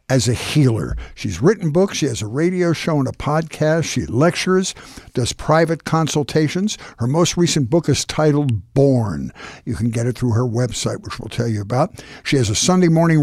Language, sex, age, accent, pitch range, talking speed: English, male, 60-79, American, 125-165 Hz, 195 wpm